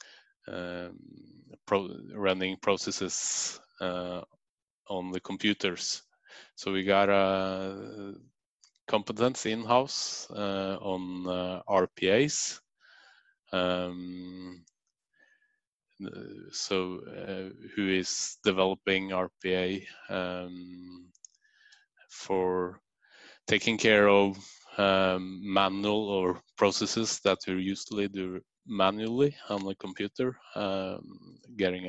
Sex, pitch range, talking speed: male, 90-100 Hz, 80 wpm